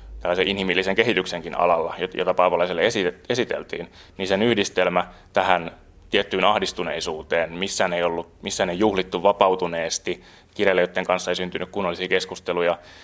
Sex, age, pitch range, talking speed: male, 20-39, 85-95 Hz, 120 wpm